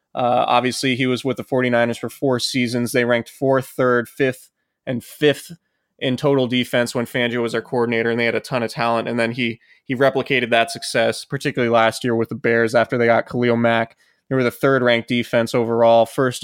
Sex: male